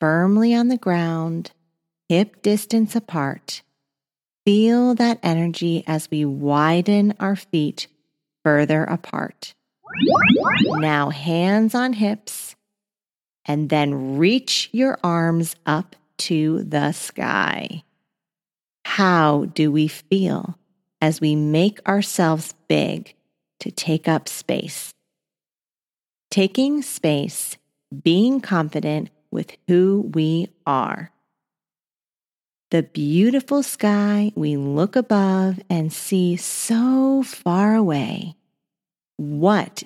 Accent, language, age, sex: American, English, 40-59, female